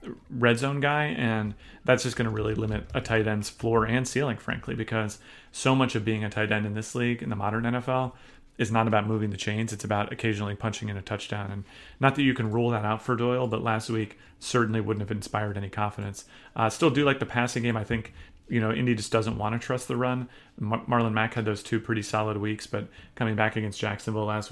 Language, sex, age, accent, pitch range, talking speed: English, male, 30-49, American, 110-120 Hz, 235 wpm